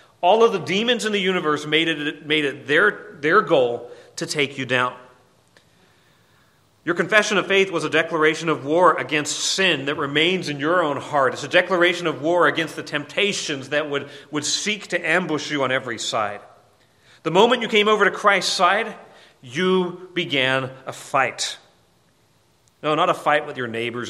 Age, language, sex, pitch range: 40-59, English, male, 135-180 Hz